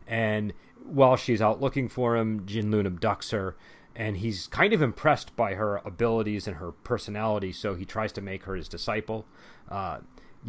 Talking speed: 175 wpm